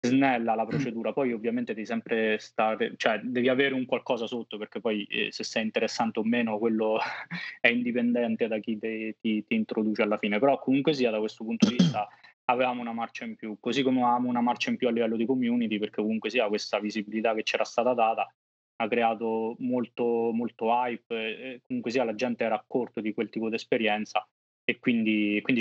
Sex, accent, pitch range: male, native, 110-125 Hz